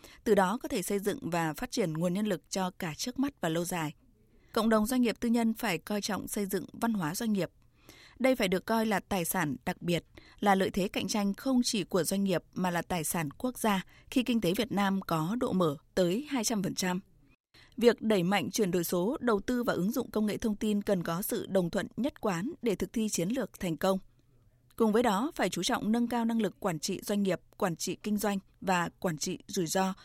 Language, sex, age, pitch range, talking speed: Vietnamese, female, 20-39, 180-230 Hz, 240 wpm